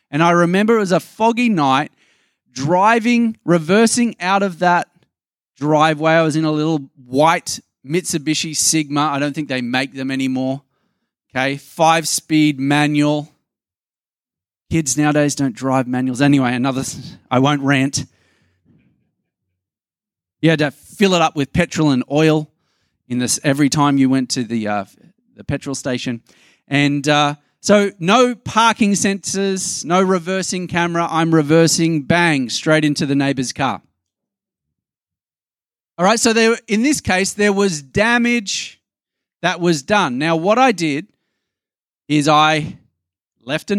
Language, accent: English, Australian